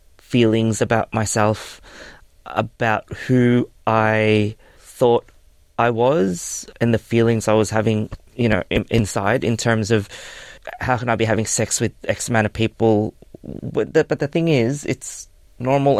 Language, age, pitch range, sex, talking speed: Filipino, 20-39, 100-115 Hz, male, 155 wpm